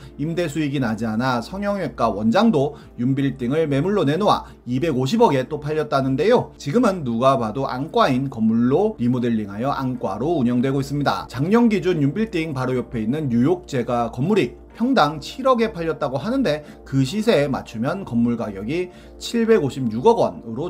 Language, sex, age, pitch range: Korean, male, 30-49, 120-185 Hz